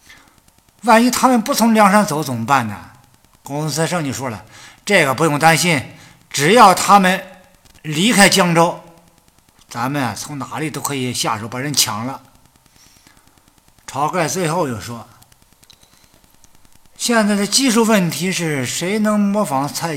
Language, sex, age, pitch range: Chinese, male, 50-69, 130-190 Hz